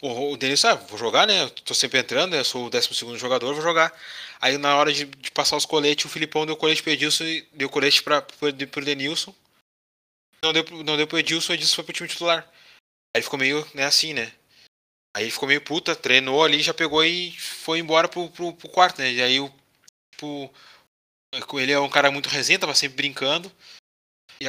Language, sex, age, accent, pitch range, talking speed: Portuguese, male, 20-39, Brazilian, 130-160 Hz, 210 wpm